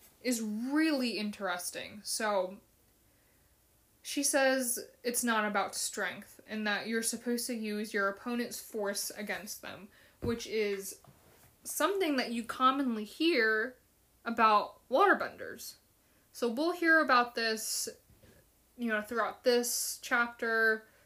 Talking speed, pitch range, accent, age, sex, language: 115 wpm, 205-250 Hz, American, 20-39, female, English